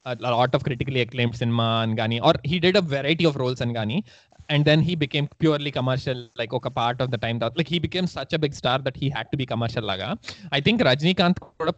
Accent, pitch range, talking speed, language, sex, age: native, 125-155 Hz, 230 wpm, Telugu, male, 20-39